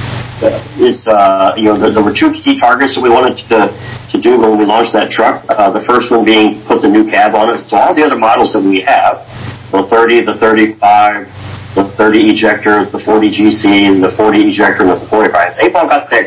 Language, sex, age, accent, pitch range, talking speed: English, male, 50-69, American, 95-115 Hz, 220 wpm